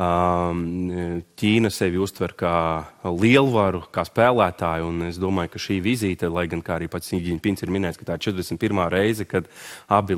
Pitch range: 90-105 Hz